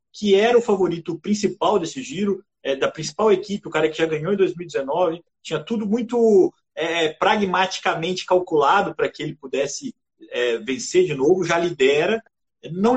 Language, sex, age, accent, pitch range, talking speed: Portuguese, male, 30-49, Brazilian, 145-200 Hz, 160 wpm